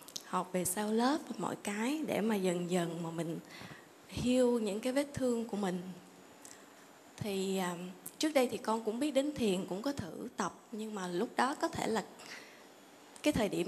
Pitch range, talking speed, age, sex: 185-245 Hz, 195 wpm, 20-39, female